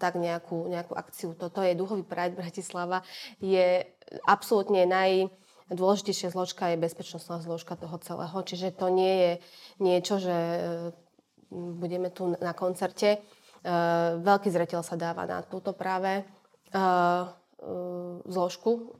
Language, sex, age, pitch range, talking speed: Slovak, female, 20-39, 170-195 Hz, 115 wpm